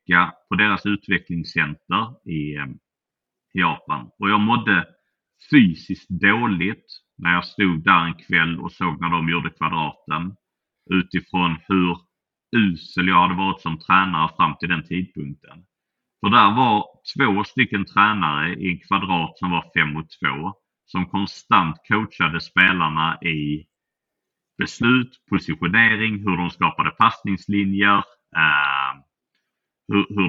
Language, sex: Swedish, male